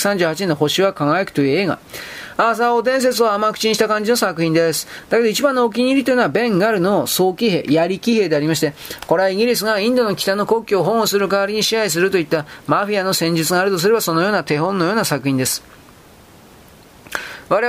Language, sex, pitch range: Japanese, male, 165-225 Hz